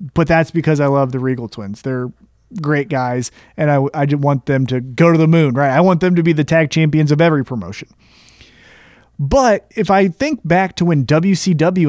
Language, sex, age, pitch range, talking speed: English, male, 30-49, 145-185 Hz, 210 wpm